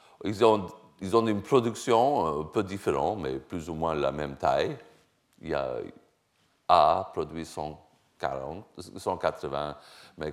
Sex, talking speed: male, 130 wpm